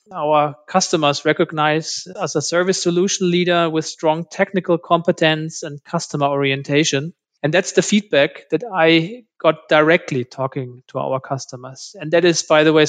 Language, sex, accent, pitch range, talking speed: English, male, German, 140-170 Hz, 155 wpm